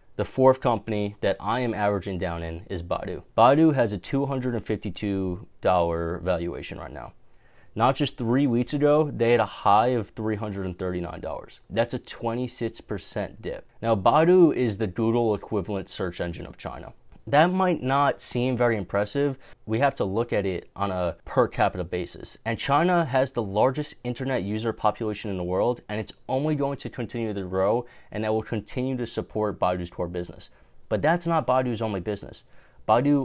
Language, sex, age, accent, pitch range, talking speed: English, male, 30-49, American, 95-120 Hz, 170 wpm